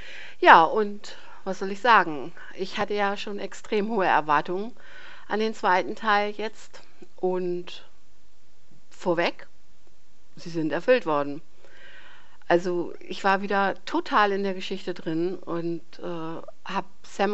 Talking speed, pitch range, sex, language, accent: 130 wpm, 170-205 Hz, female, German, German